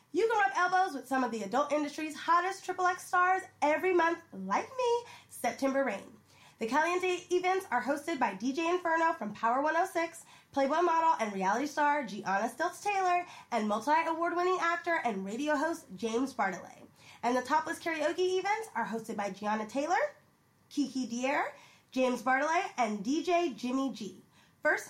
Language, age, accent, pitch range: English, 20-39, American, 265-365 Hz